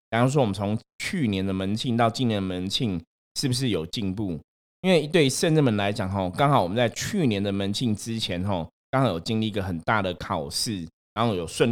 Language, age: Chinese, 20-39